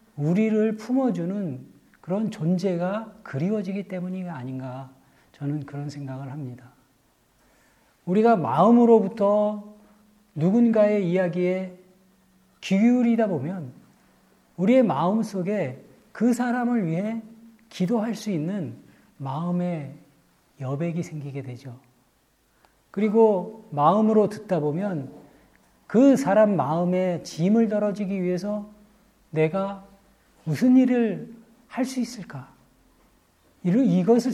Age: 40-59